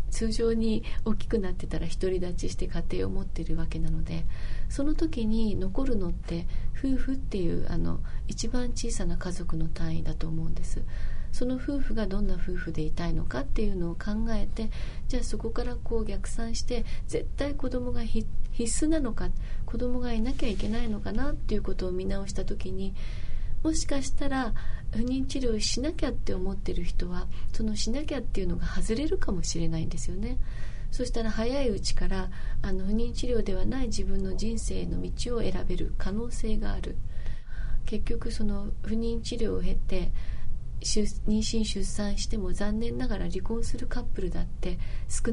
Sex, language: female, Japanese